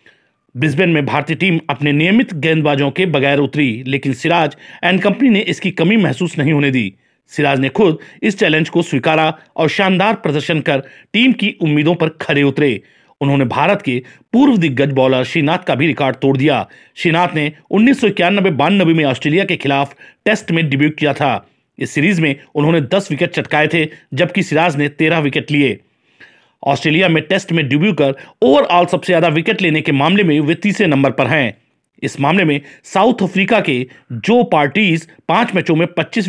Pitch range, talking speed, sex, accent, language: 145-185 Hz, 180 wpm, male, native, Hindi